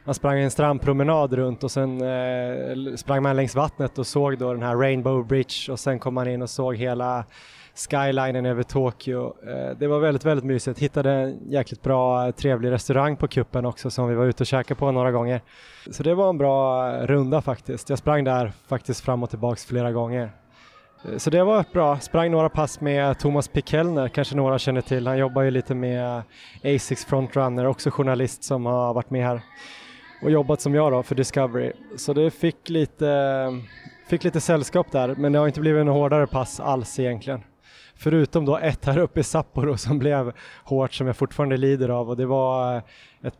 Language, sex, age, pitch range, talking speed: Swedish, male, 20-39, 125-145 Hz, 200 wpm